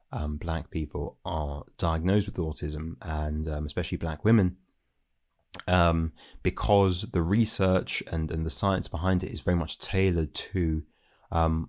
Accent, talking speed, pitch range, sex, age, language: British, 145 wpm, 75-90 Hz, male, 20-39, English